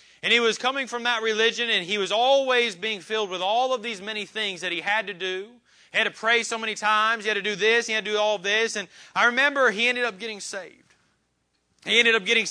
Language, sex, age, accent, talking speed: English, male, 30-49, American, 260 wpm